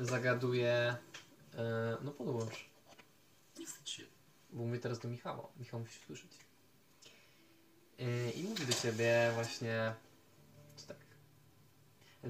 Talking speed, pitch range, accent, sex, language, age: 100 wpm, 115-140 Hz, native, male, Polish, 20-39